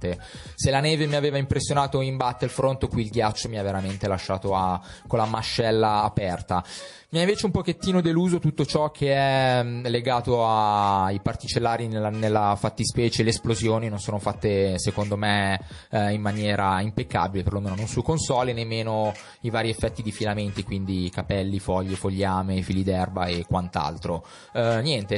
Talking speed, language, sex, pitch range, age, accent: 155 wpm, Italian, male, 95-120 Hz, 20-39, native